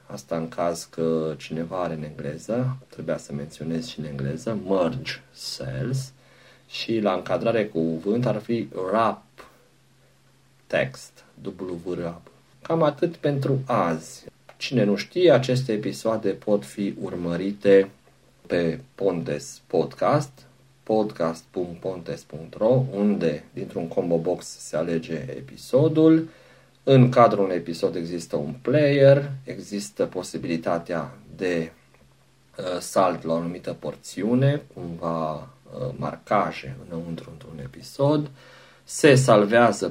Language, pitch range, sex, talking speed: Romanian, 85-125 Hz, male, 105 wpm